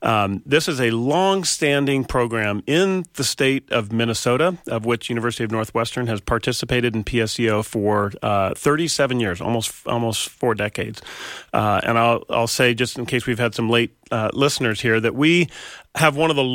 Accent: American